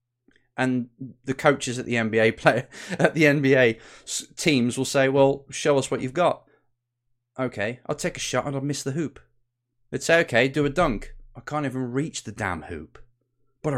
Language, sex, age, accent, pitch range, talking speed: English, male, 30-49, British, 120-140 Hz, 185 wpm